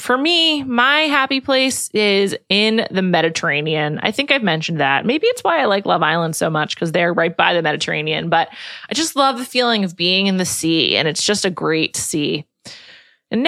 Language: English